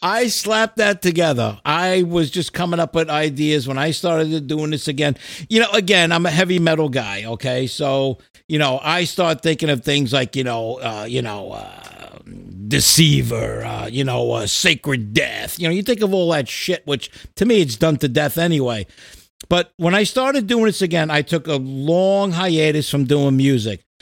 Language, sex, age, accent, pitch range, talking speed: English, male, 50-69, American, 135-180 Hz, 195 wpm